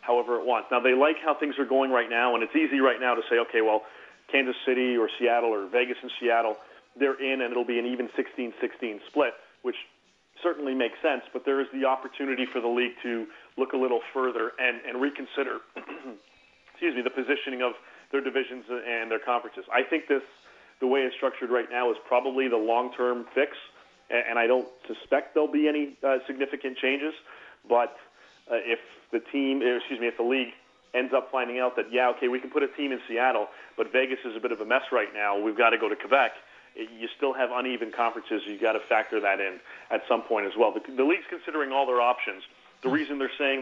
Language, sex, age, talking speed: English, male, 40-59, 220 wpm